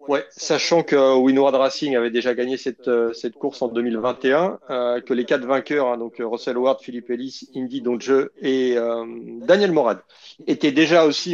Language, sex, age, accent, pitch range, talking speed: French, male, 30-49, French, 120-150 Hz, 175 wpm